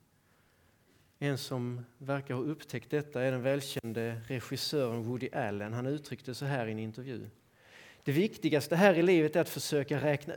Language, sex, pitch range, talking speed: Swedish, male, 115-150 Hz, 160 wpm